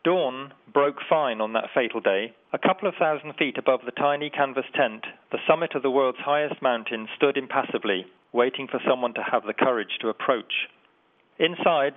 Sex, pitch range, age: male, 125-150 Hz, 40-59